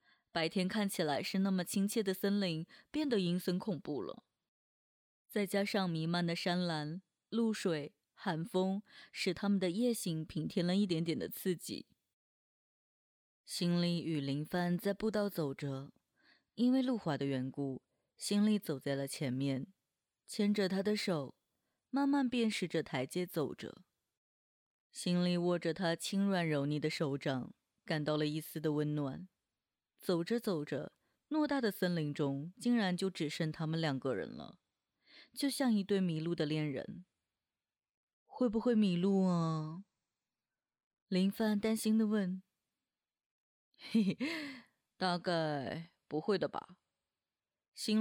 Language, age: Chinese, 20-39